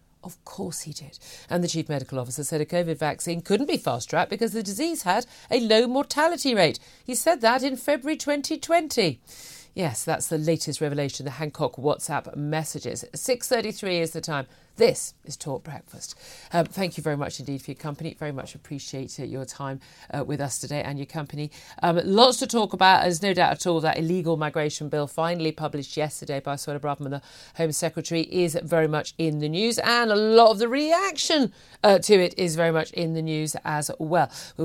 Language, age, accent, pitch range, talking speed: English, 40-59, British, 150-245 Hz, 200 wpm